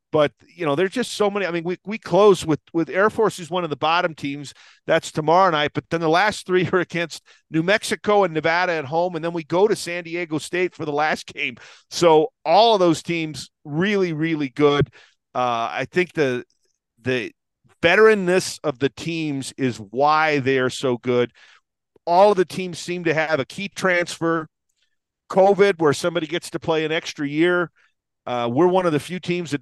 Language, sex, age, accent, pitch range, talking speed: English, male, 40-59, American, 130-170 Hz, 205 wpm